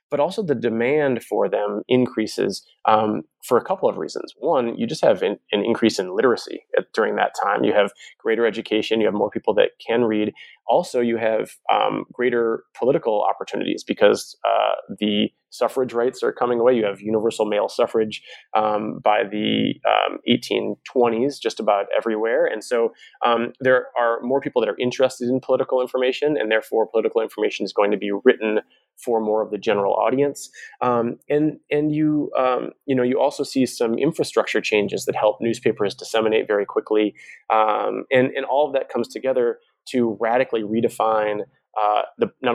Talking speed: 175 wpm